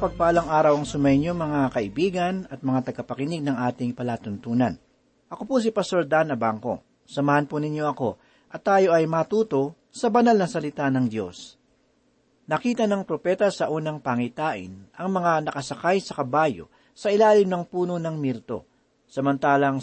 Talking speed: 150 wpm